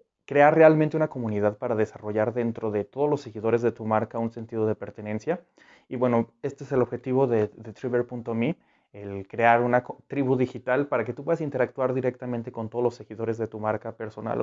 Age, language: 30-49, Spanish